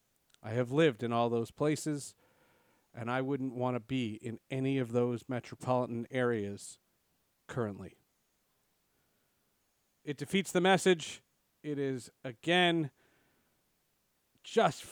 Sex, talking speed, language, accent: male, 115 wpm, English, American